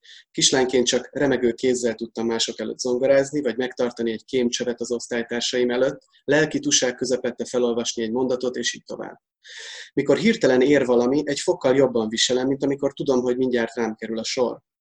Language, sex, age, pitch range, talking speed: Hungarian, male, 30-49, 120-135 Hz, 160 wpm